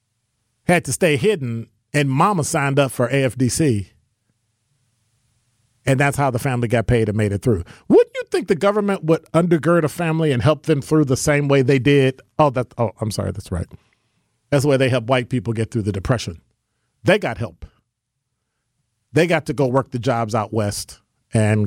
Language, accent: English, American